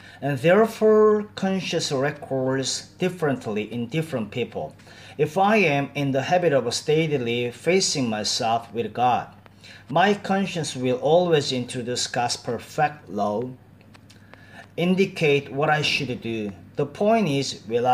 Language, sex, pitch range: Korean, male, 120-170 Hz